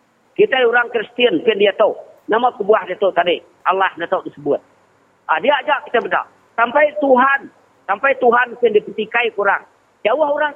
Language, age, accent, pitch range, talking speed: English, 40-59, Indonesian, 175-275 Hz, 180 wpm